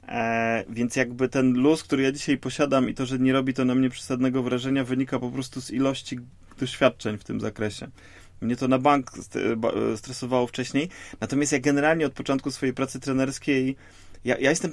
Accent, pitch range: native, 115-140 Hz